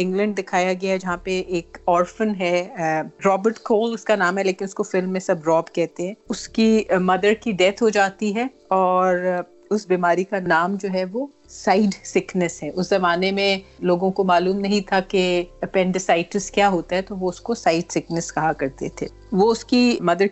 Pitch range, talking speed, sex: 175-205 Hz, 105 wpm, female